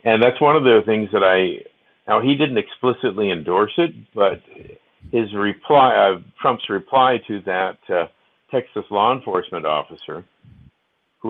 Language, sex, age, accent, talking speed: English, male, 50-69, American, 150 wpm